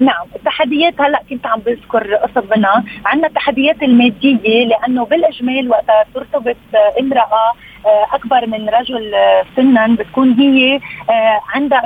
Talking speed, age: 110 wpm, 30-49